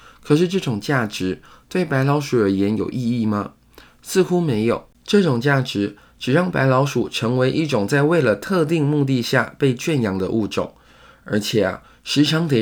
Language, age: Chinese, 20-39